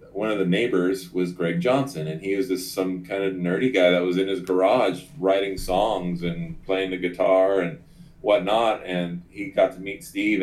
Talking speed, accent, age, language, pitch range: 200 wpm, American, 30-49, English, 85-95 Hz